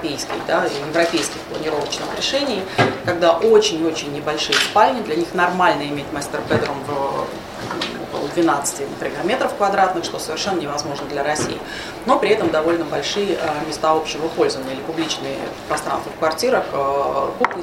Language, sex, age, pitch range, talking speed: Russian, female, 30-49, 155-190 Hz, 135 wpm